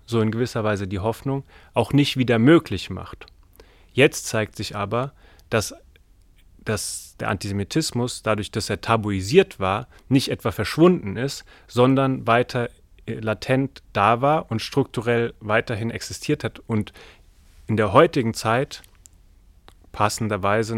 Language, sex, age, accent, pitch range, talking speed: German, male, 30-49, German, 100-125 Hz, 125 wpm